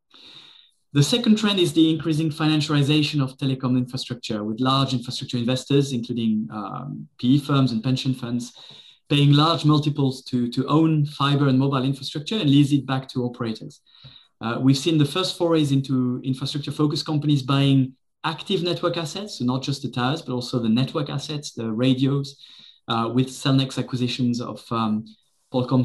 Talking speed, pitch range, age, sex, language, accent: 160 wpm, 120-150 Hz, 20-39, male, English, French